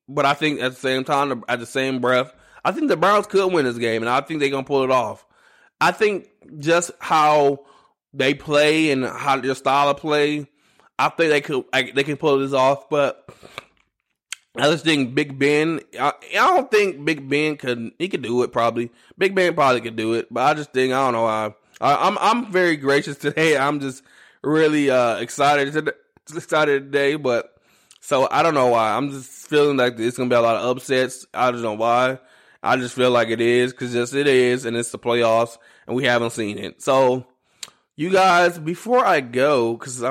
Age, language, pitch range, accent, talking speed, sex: 20-39, English, 120-145 Hz, American, 215 wpm, male